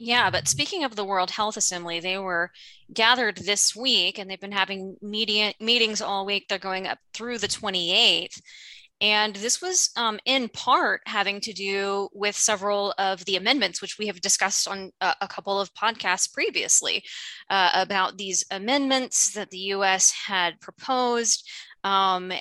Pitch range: 190-225 Hz